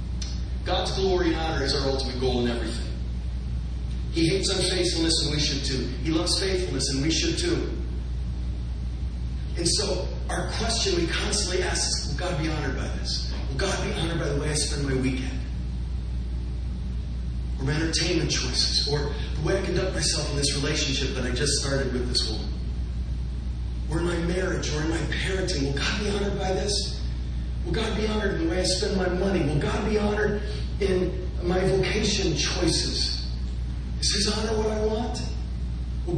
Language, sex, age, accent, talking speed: English, male, 40-59, American, 180 wpm